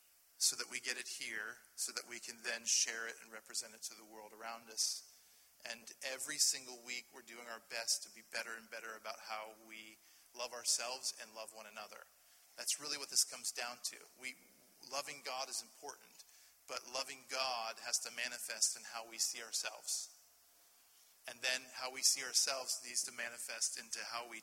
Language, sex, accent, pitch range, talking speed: English, male, American, 115-130 Hz, 190 wpm